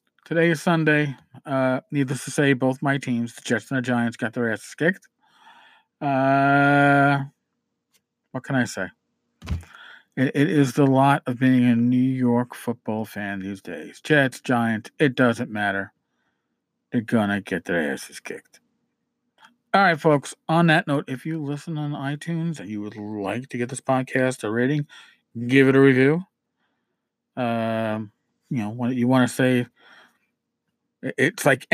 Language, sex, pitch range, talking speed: English, male, 125-160 Hz, 160 wpm